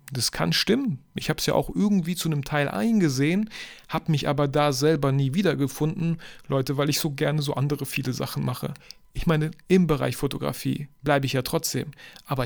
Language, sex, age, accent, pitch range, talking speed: German, male, 40-59, German, 140-190 Hz, 195 wpm